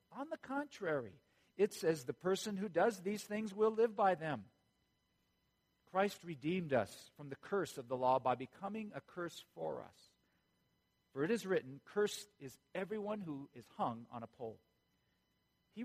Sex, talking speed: male, 165 wpm